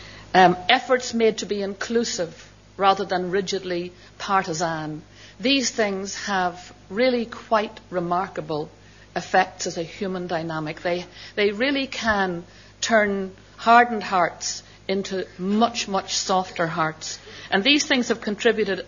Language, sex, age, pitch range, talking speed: English, female, 60-79, 170-215 Hz, 120 wpm